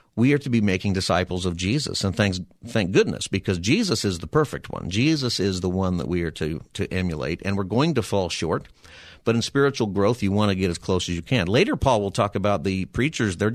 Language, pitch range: English, 90-110 Hz